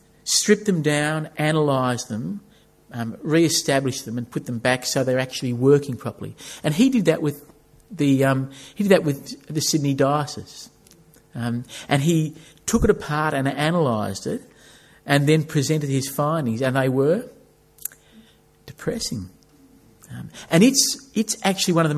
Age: 50-69